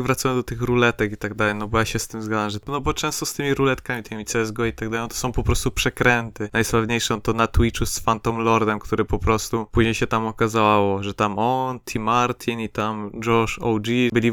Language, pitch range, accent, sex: Polish, 110-120 Hz, native, male